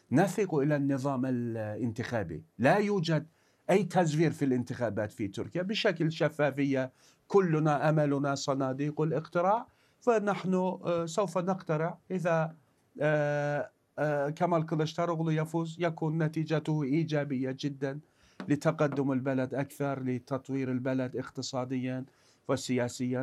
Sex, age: male, 50-69